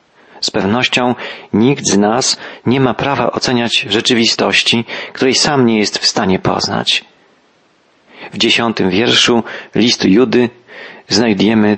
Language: Polish